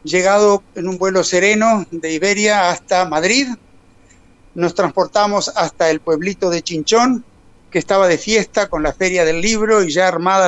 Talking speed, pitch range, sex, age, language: 160 wpm, 165-210 Hz, male, 60-79, Spanish